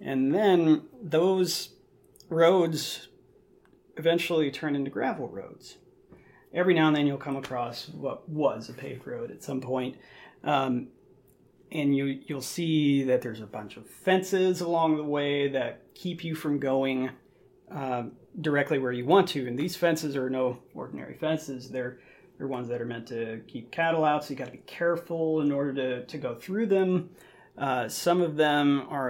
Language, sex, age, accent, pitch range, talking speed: English, male, 30-49, American, 135-170 Hz, 170 wpm